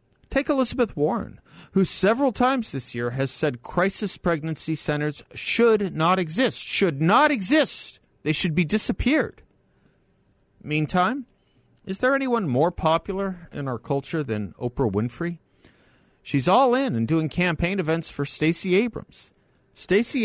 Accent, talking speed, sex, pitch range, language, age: American, 135 wpm, male, 125-195 Hz, English, 50-69